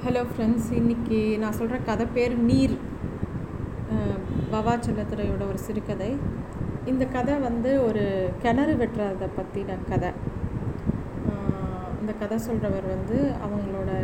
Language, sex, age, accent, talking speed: Tamil, female, 30-49, native, 105 wpm